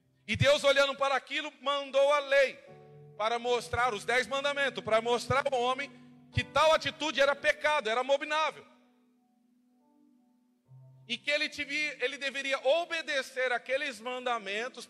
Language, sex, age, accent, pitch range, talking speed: Portuguese, male, 40-59, Brazilian, 240-280 Hz, 135 wpm